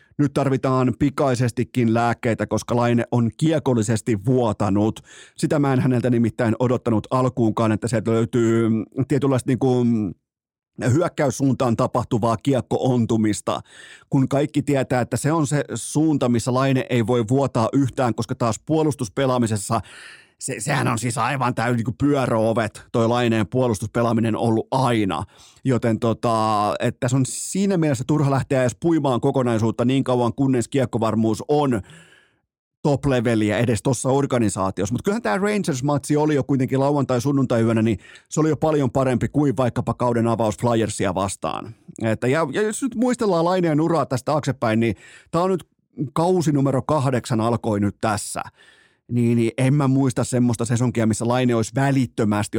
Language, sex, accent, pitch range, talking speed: Finnish, male, native, 115-140 Hz, 140 wpm